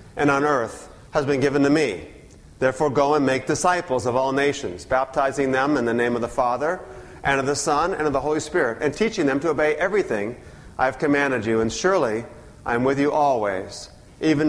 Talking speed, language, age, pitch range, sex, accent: 210 wpm, English, 40-59, 145-200 Hz, male, American